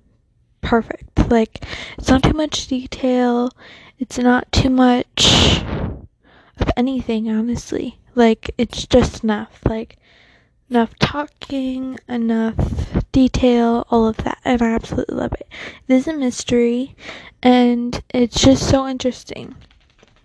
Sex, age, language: female, 10-29, English